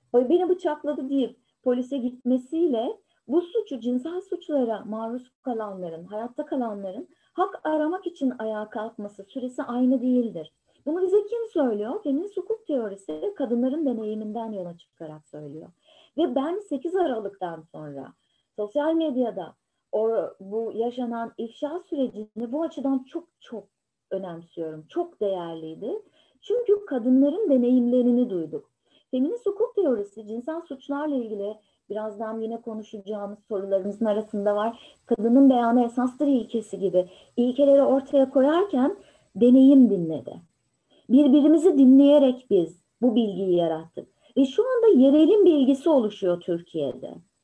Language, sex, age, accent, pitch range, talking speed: Turkish, female, 30-49, native, 205-290 Hz, 115 wpm